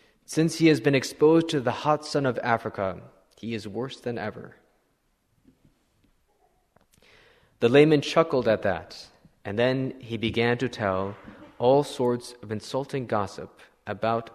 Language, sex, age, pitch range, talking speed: English, male, 20-39, 110-140 Hz, 140 wpm